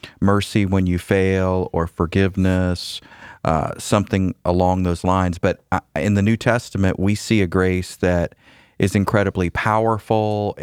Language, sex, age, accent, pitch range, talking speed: English, male, 40-59, American, 95-110 Hz, 135 wpm